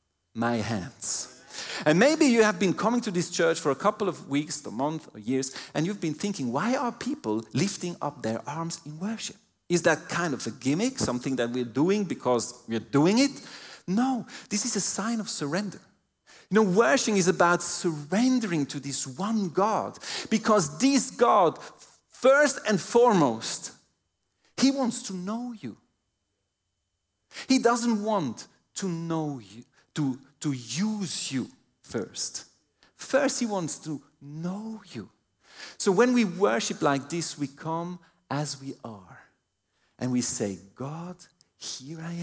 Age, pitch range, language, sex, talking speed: 40-59, 135-210 Hz, English, male, 155 wpm